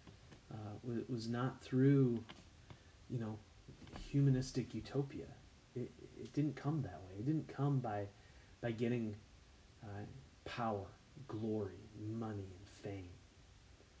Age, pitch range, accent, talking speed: 30-49, 100-135 Hz, American, 115 wpm